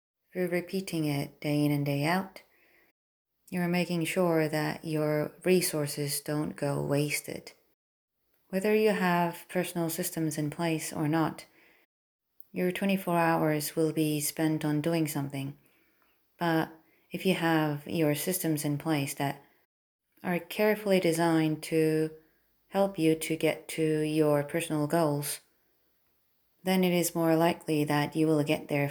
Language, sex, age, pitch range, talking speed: English, female, 30-49, 145-170 Hz, 135 wpm